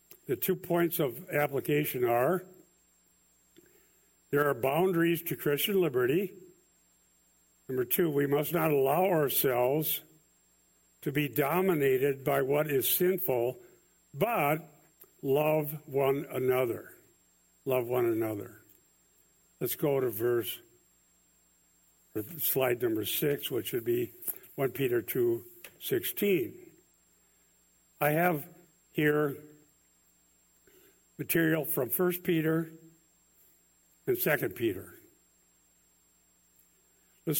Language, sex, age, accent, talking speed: English, male, 60-79, American, 95 wpm